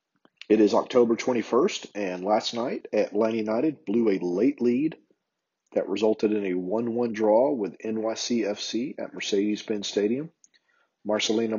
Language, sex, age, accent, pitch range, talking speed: English, male, 40-59, American, 105-125 Hz, 135 wpm